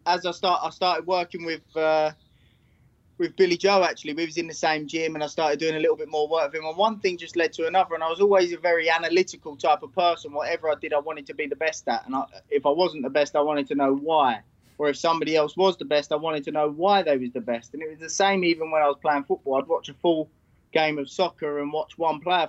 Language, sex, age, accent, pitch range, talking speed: English, male, 20-39, British, 145-165 Hz, 285 wpm